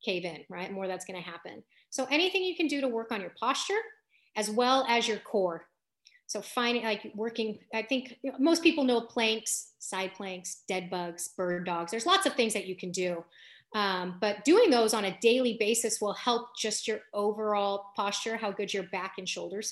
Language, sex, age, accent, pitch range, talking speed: English, female, 30-49, American, 210-260 Hz, 200 wpm